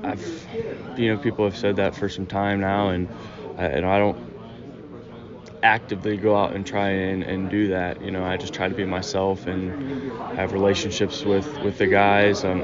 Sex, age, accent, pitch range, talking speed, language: male, 20-39, American, 95-100 Hz, 190 wpm, English